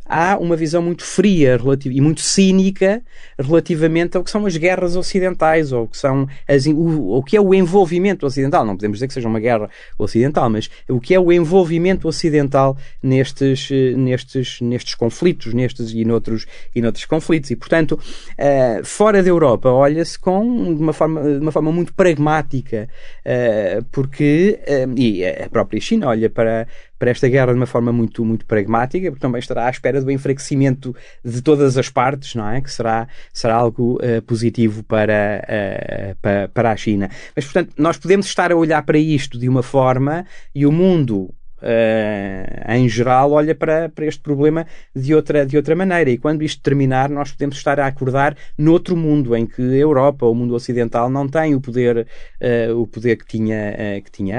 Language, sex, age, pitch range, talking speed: Portuguese, male, 20-39, 115-155 Hz, 190 wpm